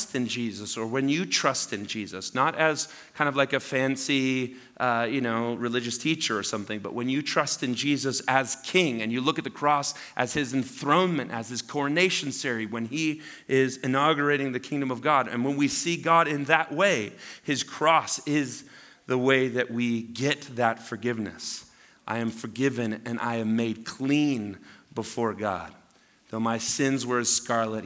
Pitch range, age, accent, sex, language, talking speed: 115-145 Hz, 30-49, American, male, English, 185 wpm